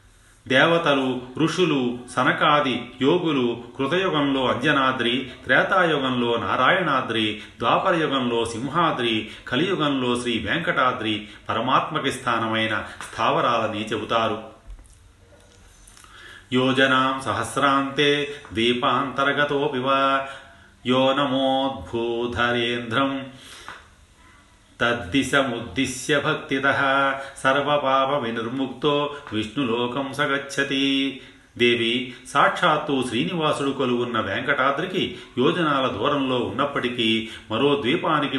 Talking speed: 60 wpm